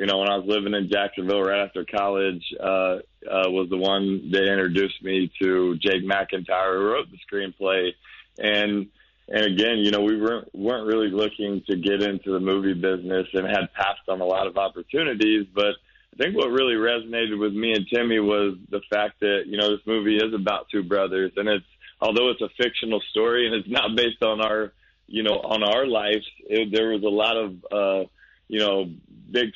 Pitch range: 95-110 Hz